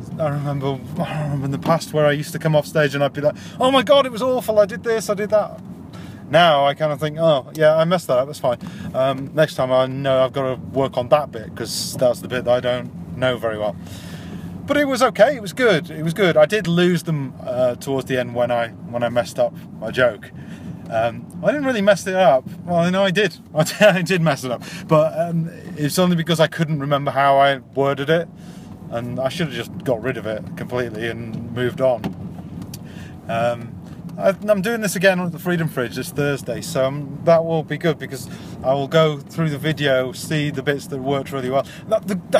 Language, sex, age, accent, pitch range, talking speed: English, male, 30-49, British, 135-180 Hz, 230 wpm